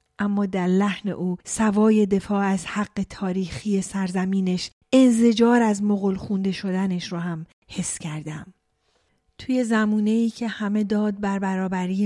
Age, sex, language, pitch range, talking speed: 30-49, female, Persian, 195-245 Hz, 130 wpm